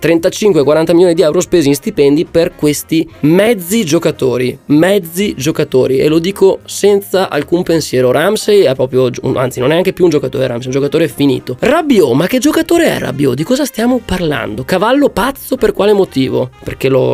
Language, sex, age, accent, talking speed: Italian, male, 20-39, native, 175 wpm